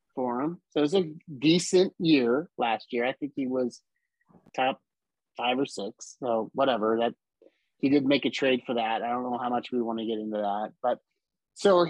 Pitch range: 130-195 Hz